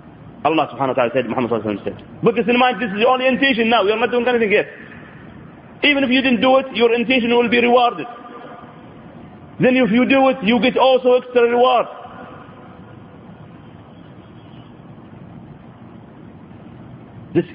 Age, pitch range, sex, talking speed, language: 40-59, 170-255 Hz, male, 145 wpm, English